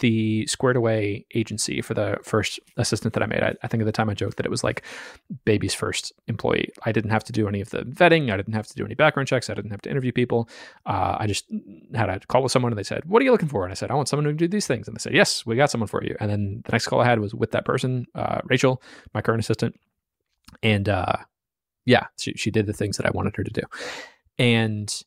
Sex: male